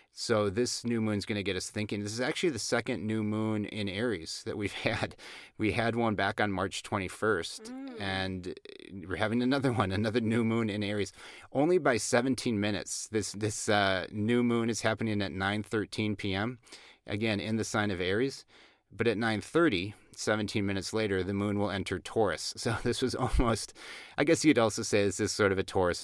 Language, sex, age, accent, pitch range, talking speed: English, male, 30-49, American, 95-115 Hz, 195 wpm